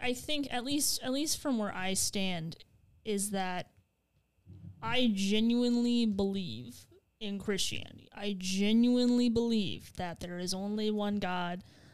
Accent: American